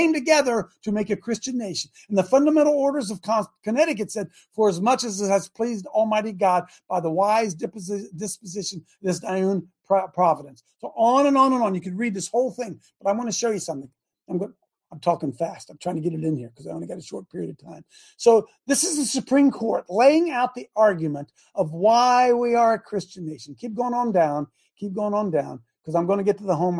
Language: English